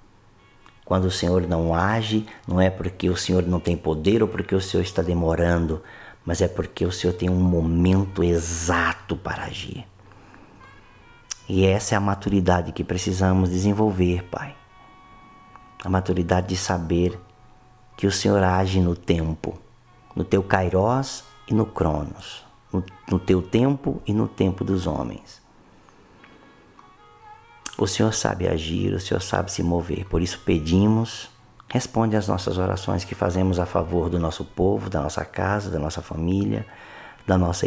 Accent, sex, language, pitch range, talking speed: Brazilian, male, Portuguese, 90-110 Hz, 150 wpm